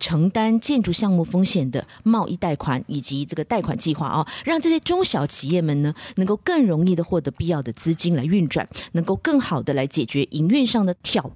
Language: Chinese